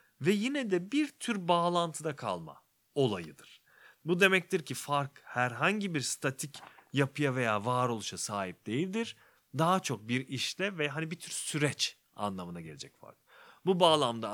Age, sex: 40-59, male